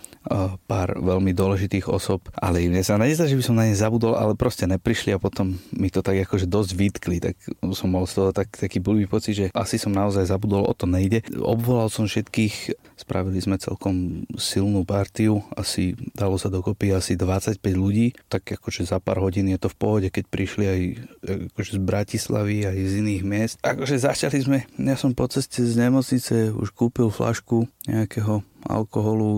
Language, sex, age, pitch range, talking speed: Slovak, male, 30-49, 95-110 Hz, 185 wpm